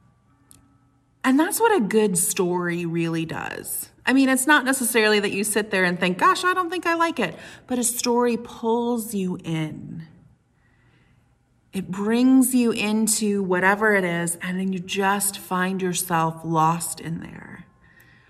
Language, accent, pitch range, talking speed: English, American, 165-210 Hz, 155 wpm